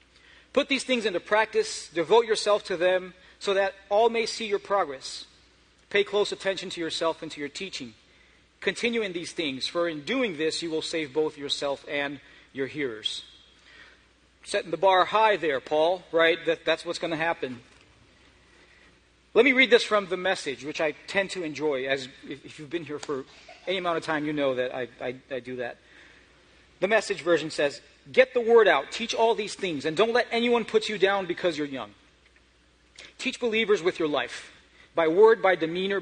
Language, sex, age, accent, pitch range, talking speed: English, male, 40-59, American, 150-205 Hz, 195 wpm